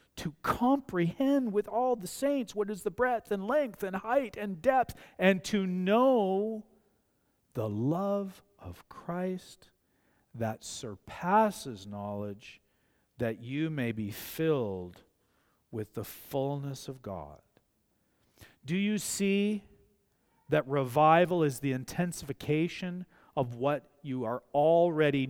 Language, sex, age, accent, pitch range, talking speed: English, male, 40-59, American, 140-190 Hz, 115 wpm